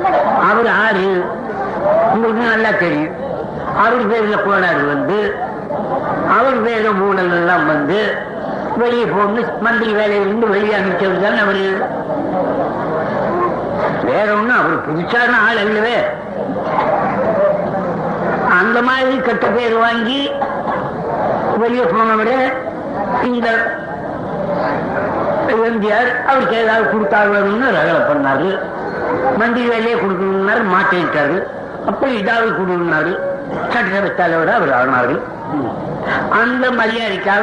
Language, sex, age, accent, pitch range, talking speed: Tamil, female, 60-79, native, 195-240 Hz, 65 wpm